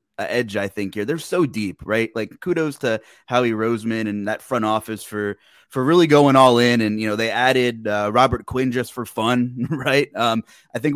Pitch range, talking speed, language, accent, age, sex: 100-125 Hz, 215 wpm, English, American, 20-39, male